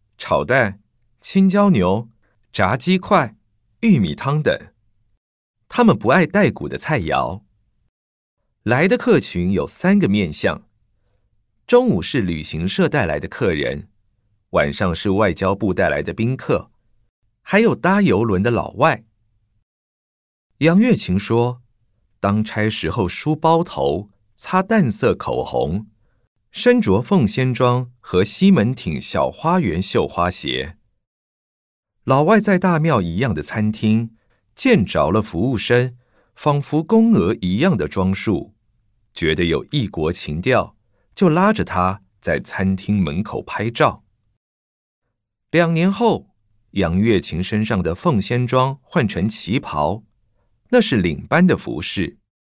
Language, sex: Chinese, male